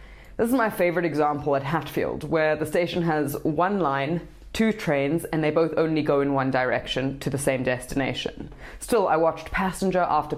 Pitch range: 140-170 Hz